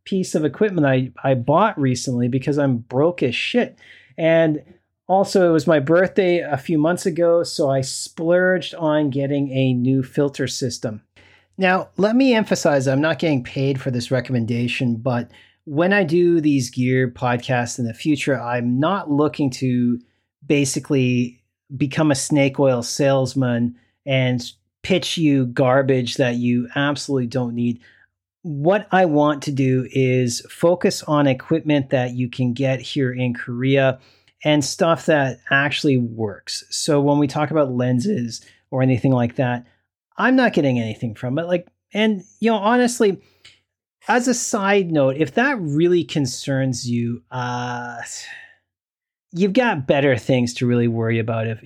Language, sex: English, male